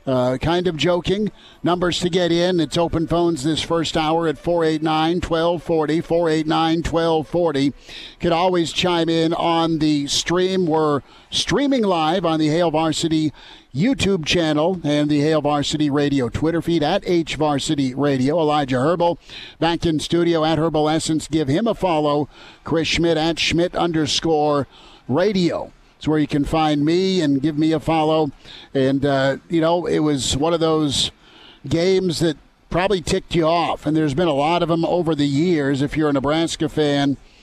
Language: English